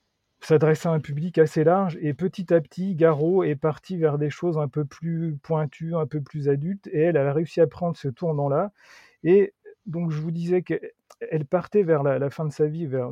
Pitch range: 140-170 Hz